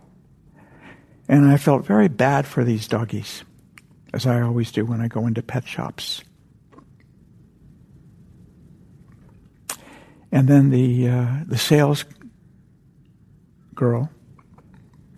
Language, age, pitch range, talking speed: English, 60-79, 120-140 Hz, 100 wpm